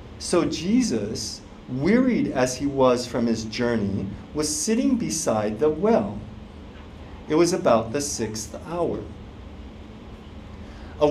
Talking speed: 115 wpm